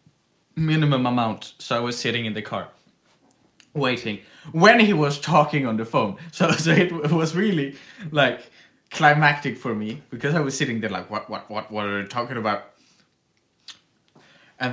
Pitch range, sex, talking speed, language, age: 135-225 Hz, male, 170 wpm, English, 20-39